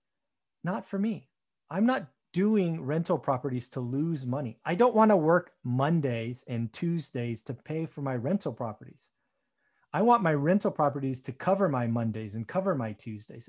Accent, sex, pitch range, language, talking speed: American, male, 135-180 Hz, English, 170 wpm